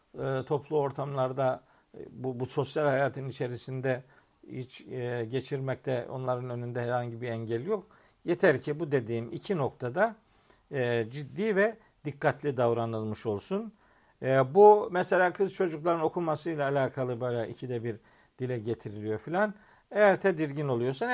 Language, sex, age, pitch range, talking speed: Turkish, male, 50-69, 125-165 Hz, 120 wpm